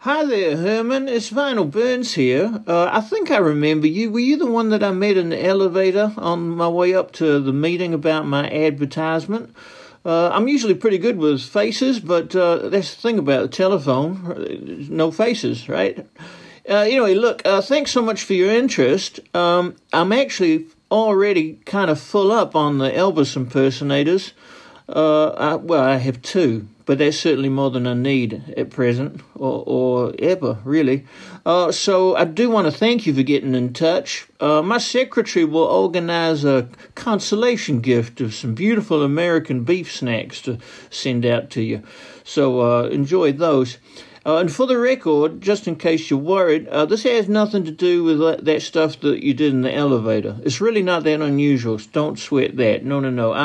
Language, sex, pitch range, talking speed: English, male, 140-205 Hz, 185 wpm